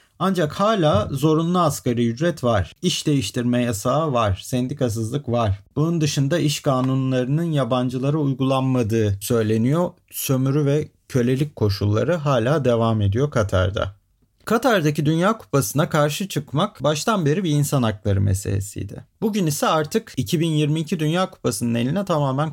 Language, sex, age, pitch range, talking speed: Turkish, male, 40-59, 110-155 Hz, 125 wpm